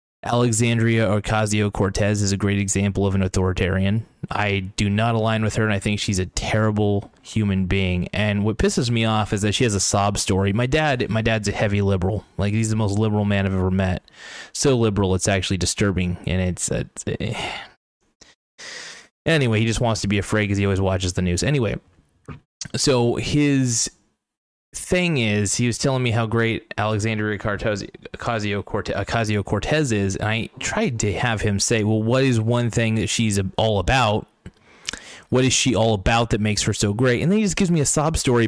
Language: English